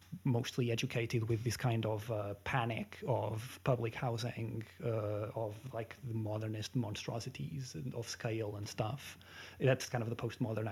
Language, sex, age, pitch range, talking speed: English, male, 30-49, 110-135 Hz, 145 wpm